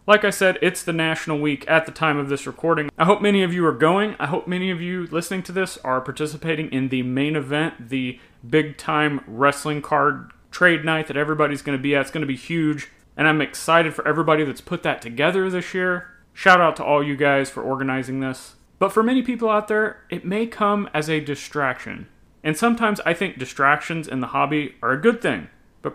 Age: 30-49